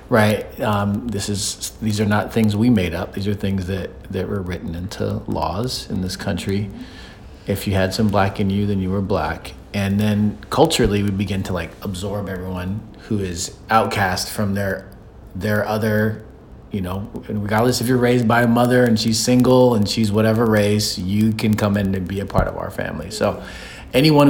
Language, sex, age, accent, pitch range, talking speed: English, male, 40-59, American, 90-110 Hz, 195 wpm